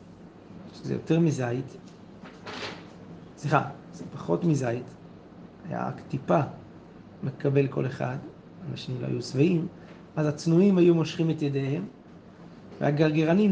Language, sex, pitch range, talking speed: Hebrew, male, 145-170 Hz, 105 wpm